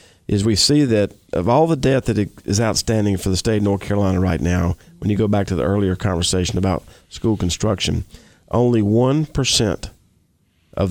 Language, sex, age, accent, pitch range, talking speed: English, male, 40-59, American, 90-110 Hz, 185 wpm